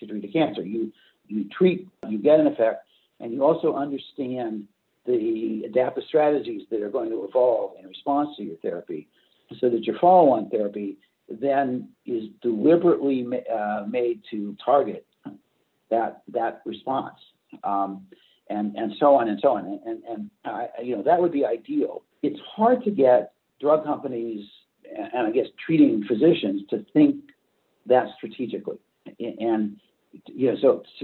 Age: 50-69